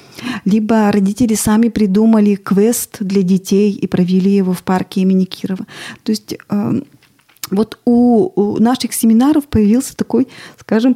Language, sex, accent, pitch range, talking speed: Russian, female, native, 195-230 Hz, 130 wpm